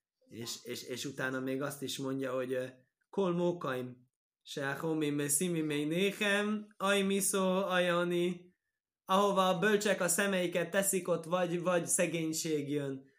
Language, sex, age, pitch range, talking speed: Hungarian, male, 20-39, 120-175 Hz, 125 wpm